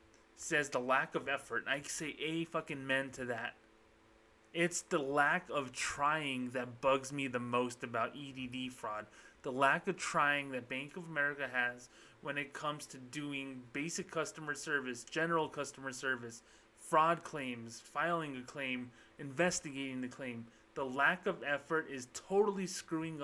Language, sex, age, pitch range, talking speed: English, male, 30-49, 120-145 Hz, 155 wpm